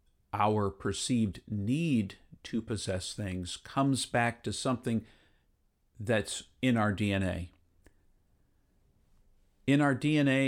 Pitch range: 95-120 Hz